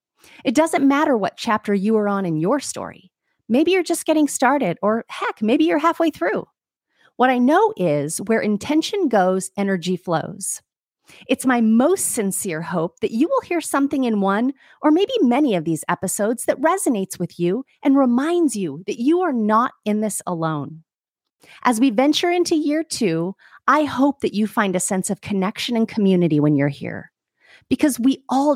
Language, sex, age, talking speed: English, female, 30-49, 180 wpm